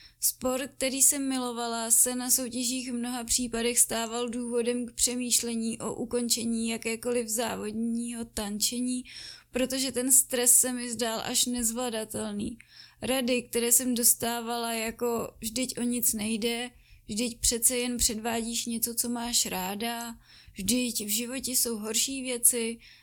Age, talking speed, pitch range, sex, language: 20-39, 130 wpm, 230-250 Hz, female, Czech